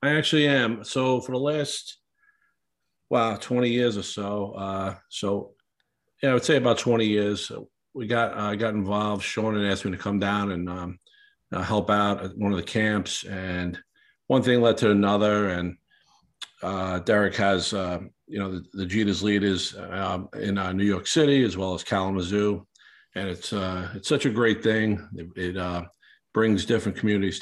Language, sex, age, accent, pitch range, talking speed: English, male, 50-69, American, 95-105 Hz, 185 wpm